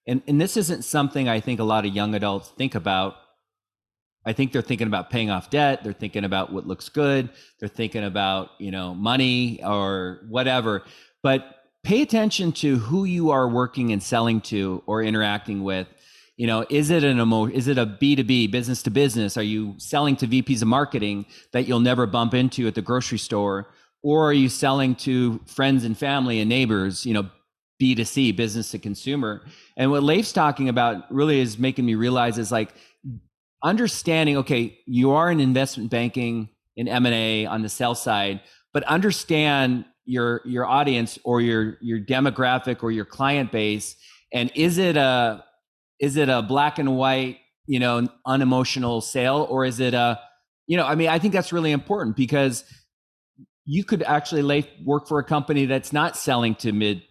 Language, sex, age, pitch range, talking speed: English, male, 30-49, 110-140 Hz, 180 wpm